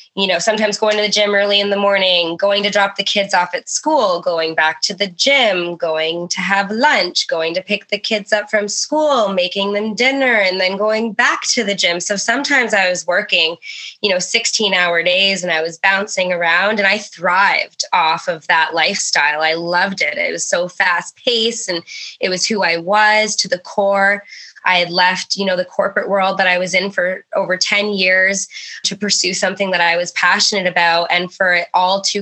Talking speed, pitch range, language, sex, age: 210 wpm, 180-210 Hz, English, female, 20-39